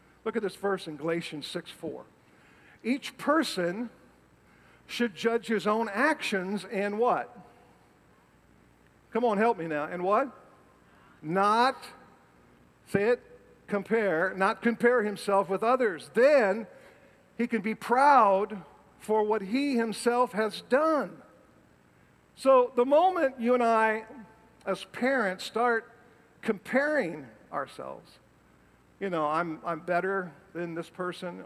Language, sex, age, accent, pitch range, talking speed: English, male, 50-69, American, 170-230 Hz, 120 wpm